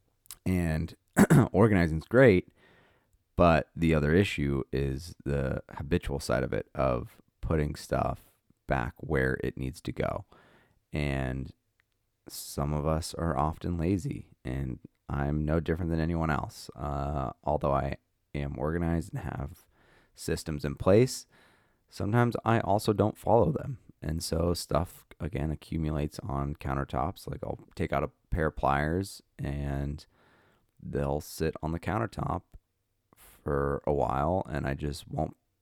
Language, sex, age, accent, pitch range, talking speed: English, male, 30-49, American, 70-90 Hz, 135 wpm